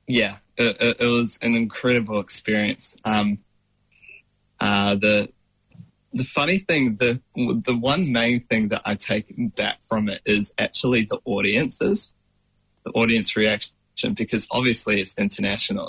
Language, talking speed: English, 130 wpm